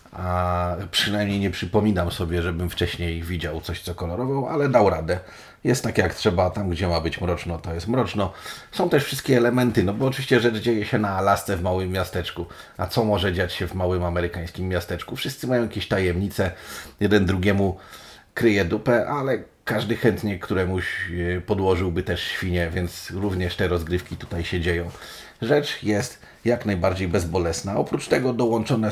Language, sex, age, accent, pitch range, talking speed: Polish, male, 30-49, native, 90-105 Hz, 165 wpm